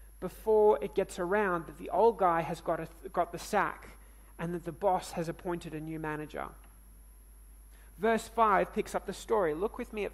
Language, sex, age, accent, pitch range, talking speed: English, male, 30-49, Australian, 140-215 Hz, 195 wpm